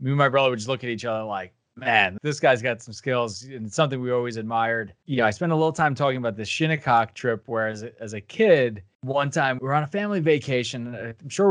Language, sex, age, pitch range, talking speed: English, male, 20-39, 115-145 Hz, 255 wpm